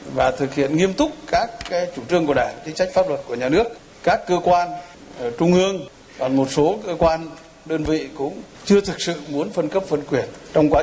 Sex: male